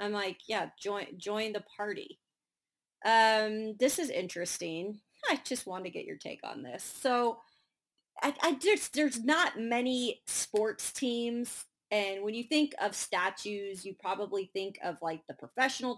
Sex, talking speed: female, 160 wpm